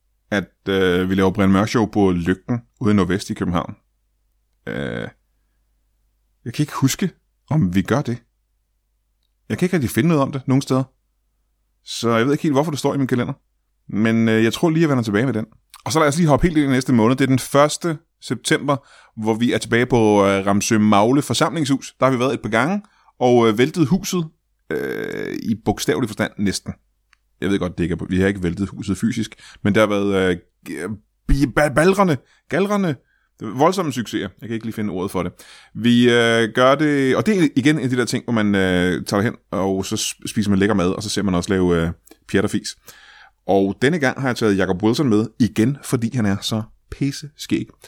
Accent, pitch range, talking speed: native, 100-140 Hz, 215 wpm